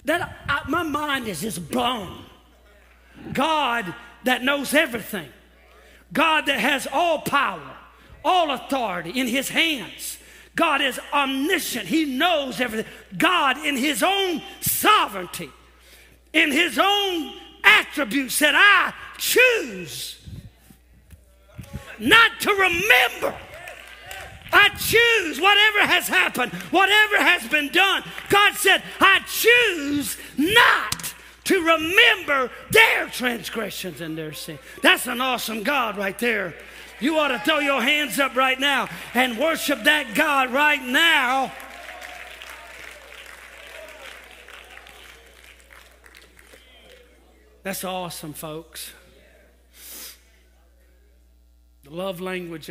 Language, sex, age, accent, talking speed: English, male, 40-59, American, 100 wpm